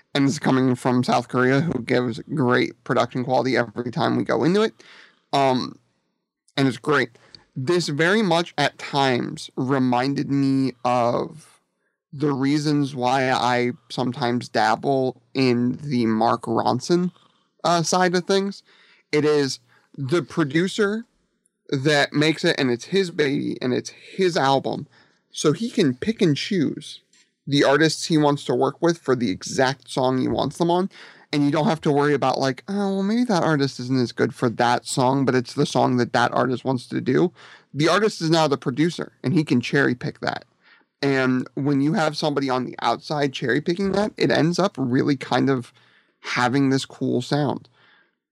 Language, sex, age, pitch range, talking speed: English, male, 30-49, 130-165 Hz, 175 wpm